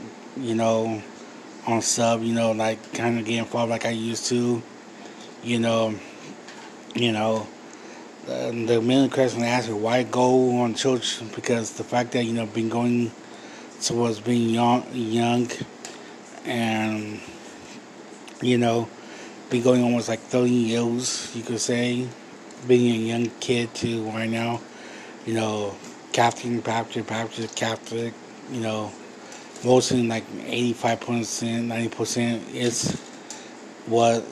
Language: English